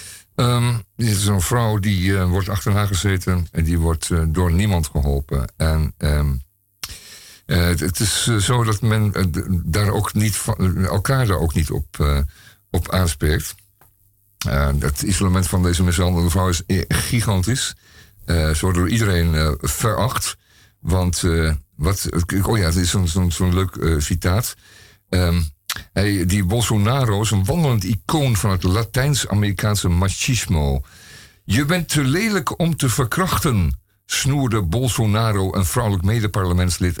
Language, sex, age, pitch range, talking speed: Dutch, male, 50-69, 85-110 Hz, 145 wpm